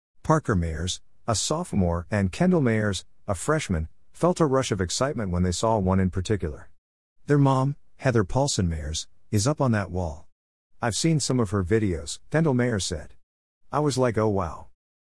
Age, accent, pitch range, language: 50-69, American, 85-120 Hz, English